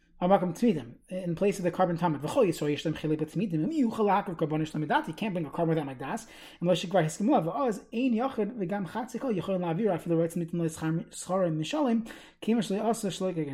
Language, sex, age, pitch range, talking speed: English, male, 30-49, 160-200 Hz, 100 wpm